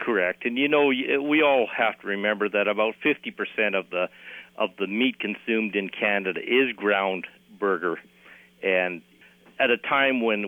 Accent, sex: American, male